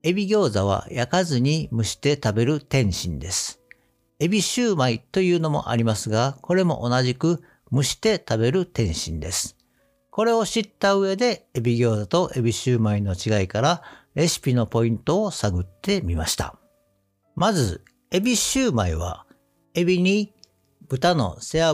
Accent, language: native, Japanese